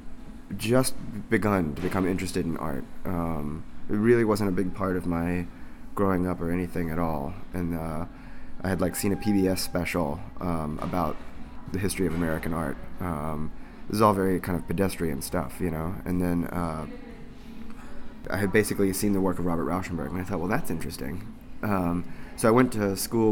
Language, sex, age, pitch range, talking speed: English, male, 20-39, 85-105 Hz, 190 wpm